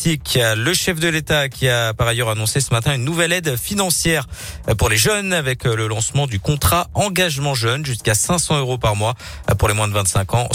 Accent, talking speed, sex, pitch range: French, 205 wpm, male, 105-145 Hz